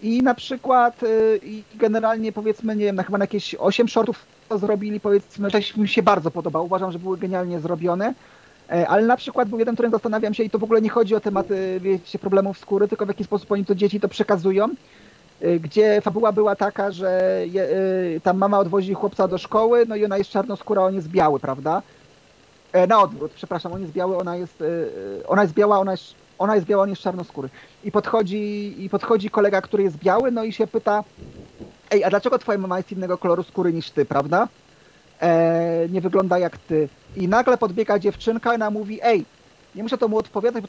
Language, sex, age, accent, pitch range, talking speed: Polish, male, 30-49, native, 185-220 Hz, 200 wpm